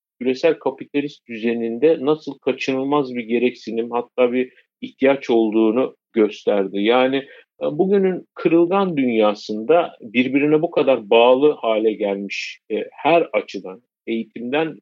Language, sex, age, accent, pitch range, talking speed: Turkish, male, 50-69, native, 115-150 Hz, 105 wpm